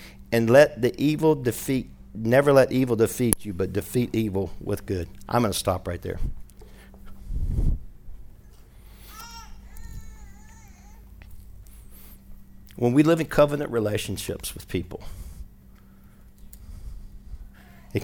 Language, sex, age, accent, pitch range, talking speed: English, male, 50-69, American, 95-105 Hz, 100 wpm